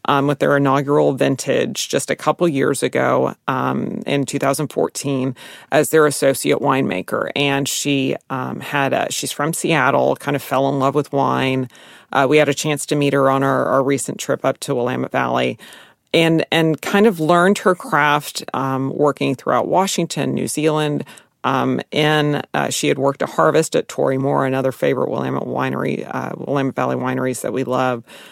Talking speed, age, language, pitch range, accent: 180 wpm, 40-59, English, 135-160 Hz, American